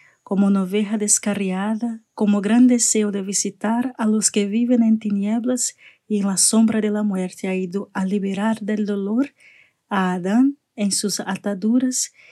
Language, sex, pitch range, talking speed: Spanish, female, 195-230 Hz, 160 wpm